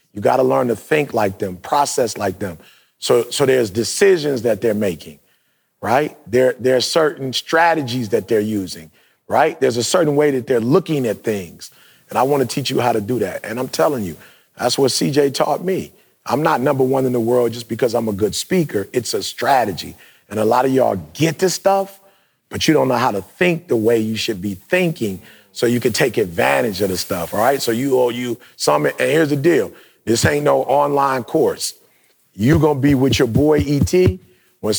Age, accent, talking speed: 40-59, American, 215 wpm